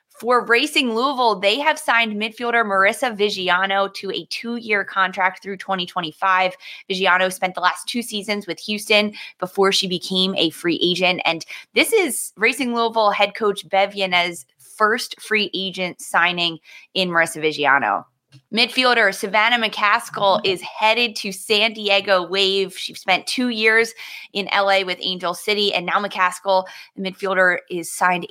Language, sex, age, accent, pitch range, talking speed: English, female, 20-39, American, 170-210 Hz, 145 wpm